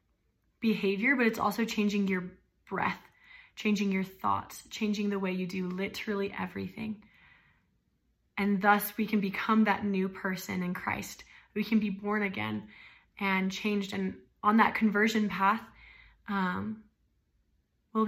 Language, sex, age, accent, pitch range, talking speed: English, female, 20-39, American, 195-220 Hz, 135 wpm